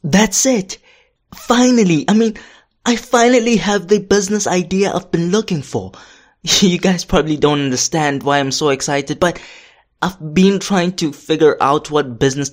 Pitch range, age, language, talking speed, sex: 135-185 Hz, 20-39, English, 160 wpm, male